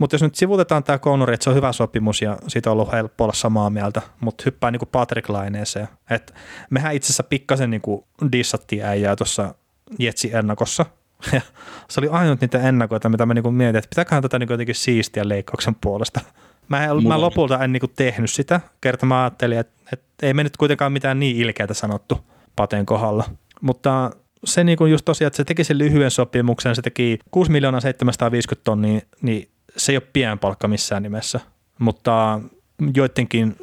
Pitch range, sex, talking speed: 110-135 Hz, male, 180 wpm